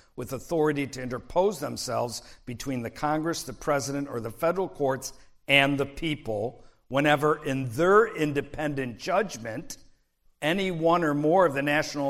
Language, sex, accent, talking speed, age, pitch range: English, male, American, 145 wpm, 50-69, 120-145 Hz